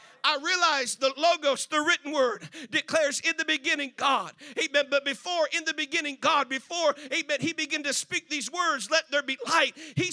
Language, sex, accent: English, male, American